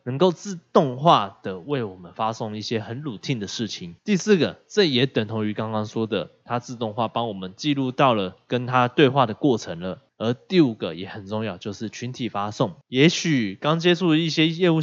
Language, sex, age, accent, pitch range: Chinese, male, 20-39, native, 110-160 Hz